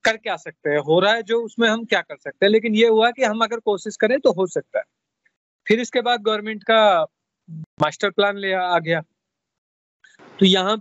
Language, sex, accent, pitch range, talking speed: Hindi, male, native, 175-210 Hz, 215 wpm